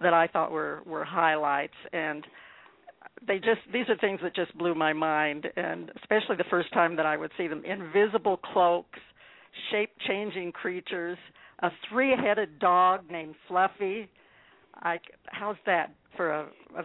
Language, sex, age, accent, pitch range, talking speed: English, female, 60-79, American, 170-215 Hz, 155 wpm